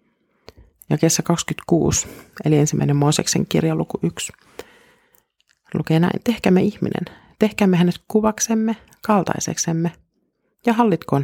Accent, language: native, Finnish